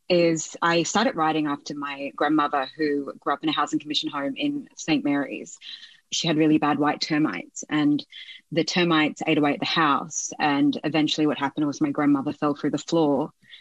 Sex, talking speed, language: female, 190 wpm, English